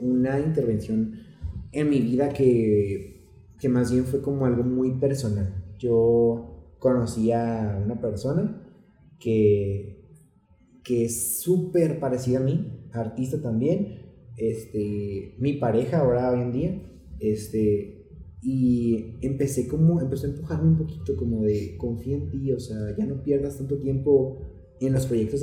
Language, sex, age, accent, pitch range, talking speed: Spanish, male, 30-49, Mexican, 105-140 Hz, 135 wpm